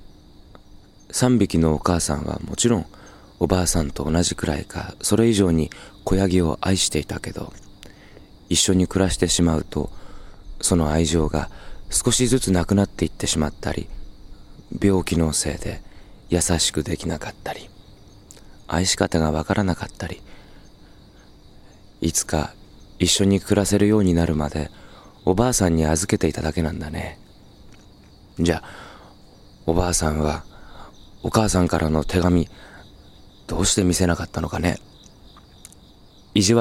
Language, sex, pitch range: Japanese, male, 80-100 Hz